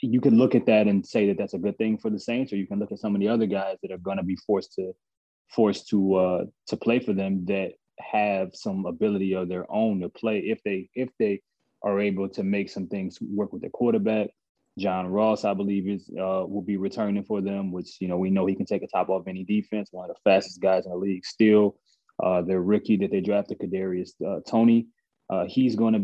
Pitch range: 95-115 Hz